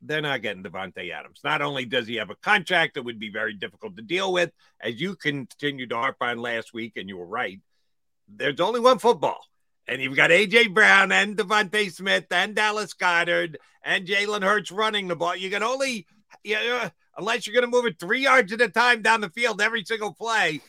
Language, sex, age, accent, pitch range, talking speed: English, male, 50-69, American, 125-210 Hz, 215 wpm